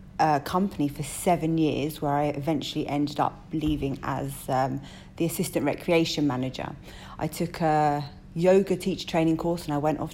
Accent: British